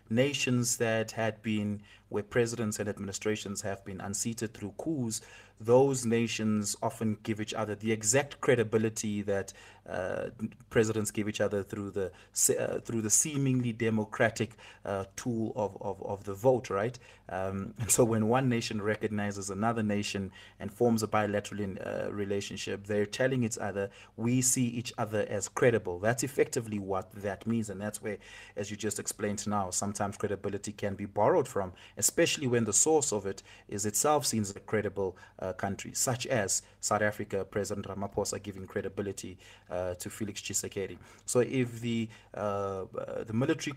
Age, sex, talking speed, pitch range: 30-49, male, 160 wpm, 100-115 Hz